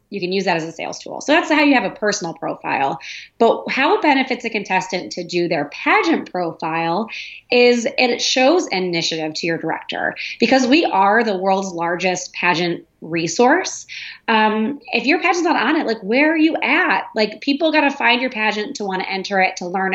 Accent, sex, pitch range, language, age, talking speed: American, female, 185-250 Hz, English, 30-49, 205 wpm